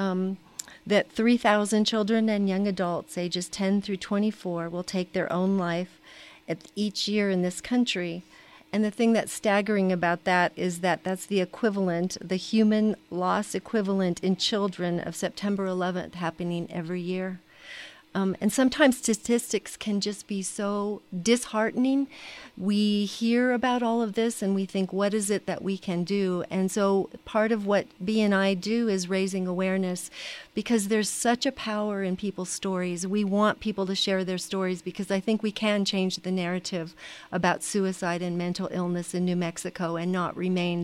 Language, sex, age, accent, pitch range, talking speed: English, female, 40-59, American, 175-210 Hz, 170 wpm